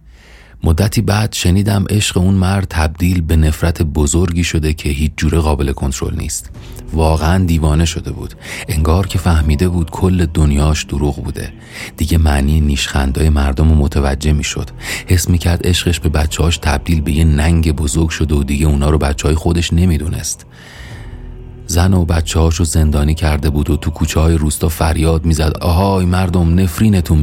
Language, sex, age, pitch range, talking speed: Persian, male, 30-49, 75-85 Hz, 165 wpm